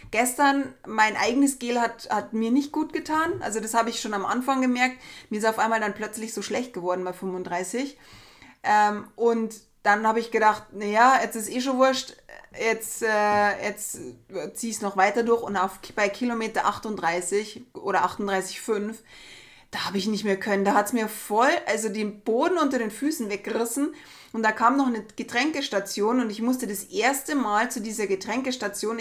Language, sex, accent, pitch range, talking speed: German, female, German, 205-255 Hz, 185 wpm